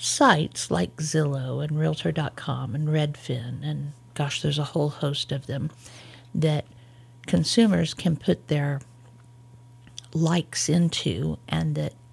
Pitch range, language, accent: 120-160 Hz, English, American